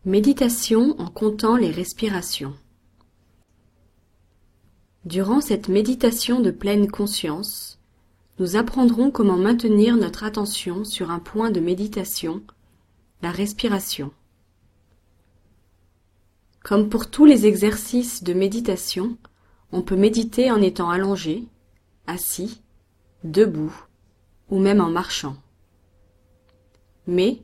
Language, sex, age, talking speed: English, female, 30-49, 95 wpm